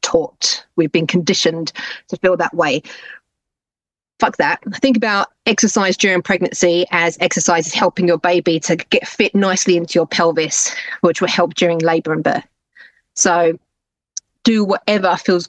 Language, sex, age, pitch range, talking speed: English, female, 30-49, 165-195 Hz, 150 wpm